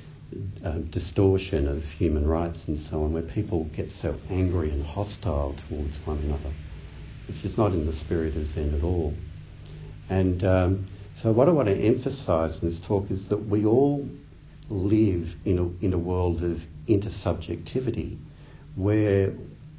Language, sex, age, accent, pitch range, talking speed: English, male, 60-79, Australian, 80-110 Hz, 160 wpm